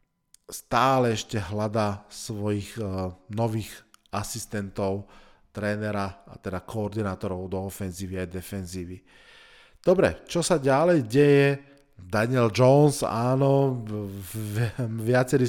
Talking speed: 90 wpm